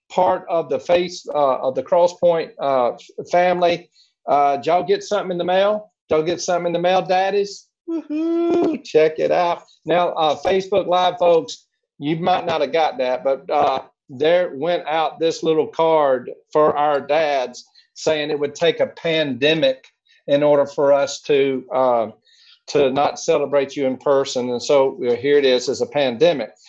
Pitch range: 150-210 Hz